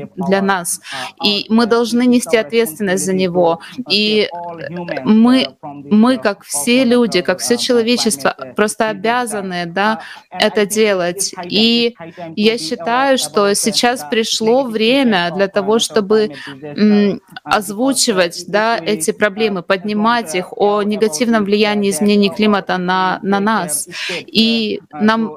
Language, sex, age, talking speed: Russian, female, 20-39, 115 wpm